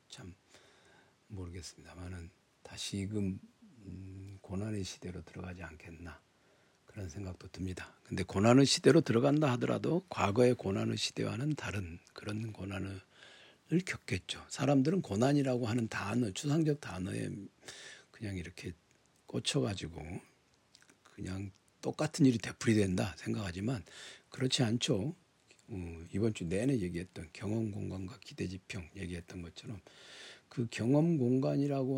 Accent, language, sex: native, Korean, male